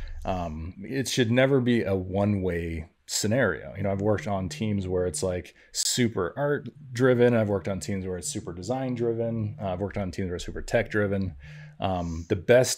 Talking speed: 195 wpm